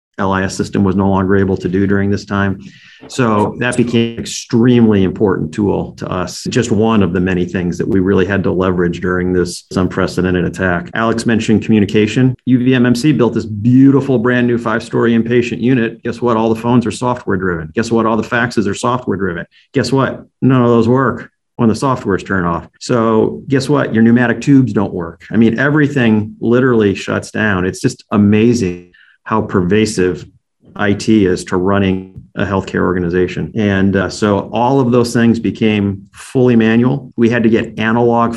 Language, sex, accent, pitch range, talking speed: English, male, American, 95-120 Hz, 180 wpm